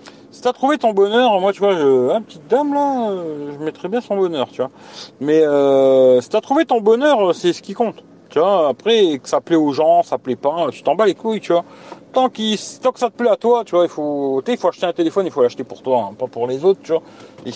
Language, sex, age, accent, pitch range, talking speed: French, male, 40-59, French, 150-230 Hz, 270 wpm